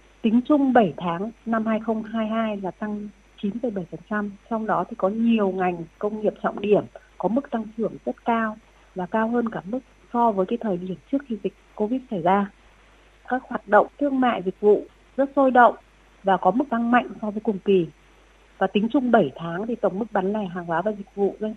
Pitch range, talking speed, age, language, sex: 195-240 Hz, 210 wpm, 30-49, Vietnamese, female